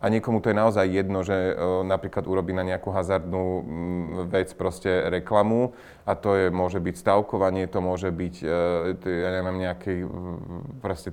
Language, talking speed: Slovak, 150 wpm